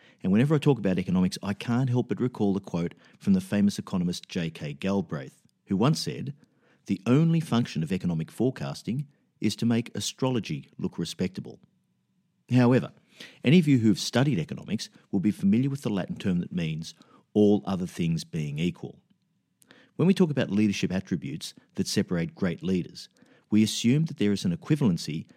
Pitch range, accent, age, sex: 95-160 Hz, Australian, 50-69, male